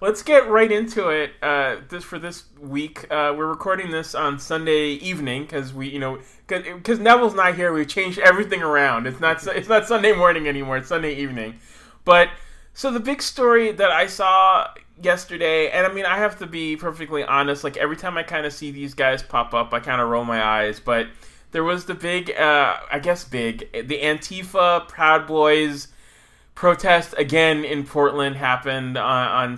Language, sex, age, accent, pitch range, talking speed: English, male, 20-39, American, 130-175 Hz, 190 wpm